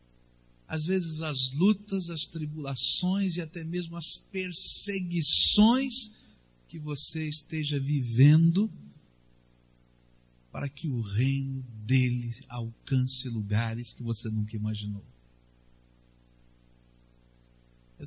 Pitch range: 110-155 Hz